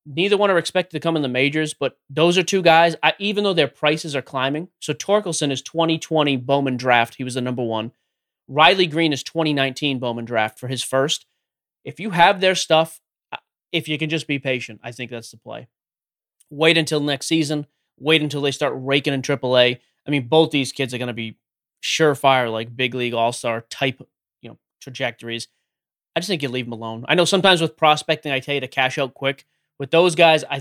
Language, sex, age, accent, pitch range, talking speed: English, male, 30-49, American, 130-160 Hz, 215 wpm